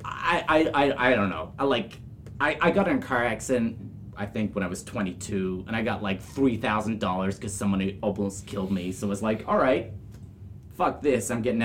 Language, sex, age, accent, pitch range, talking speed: English, male, 30-49, American, 95-125 Hz, 220 wpm